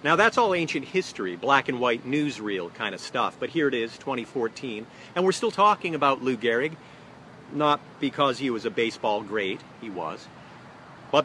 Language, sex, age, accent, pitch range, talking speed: English, male, 40-59, American, 110-145 Hz, 170 wpm